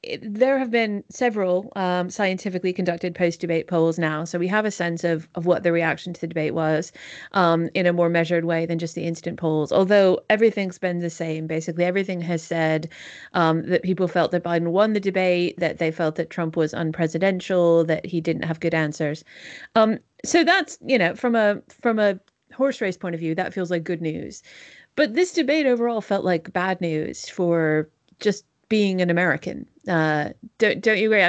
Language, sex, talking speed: English, female, 200 wpm